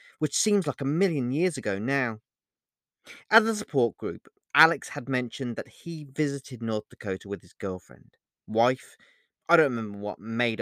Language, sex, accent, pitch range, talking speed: English, male, British, 120-180 Hz, 165 wpm